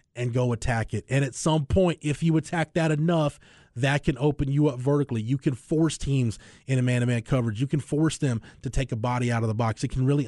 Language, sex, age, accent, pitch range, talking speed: English, male, 20-39, American, 125-155 Hz, 245 wpm